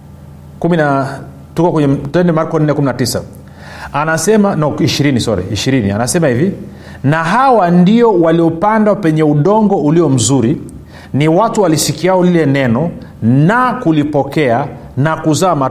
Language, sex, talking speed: Swahili, male, 115 wpm